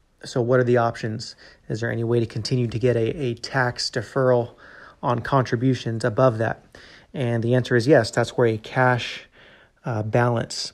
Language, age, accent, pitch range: English, 30-49, American, 115-130 Hz